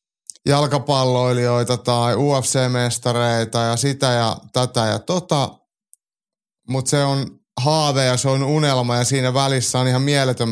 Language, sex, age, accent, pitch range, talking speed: Finnish, male, 30-49, native, 115-140 Hz, 130 wpm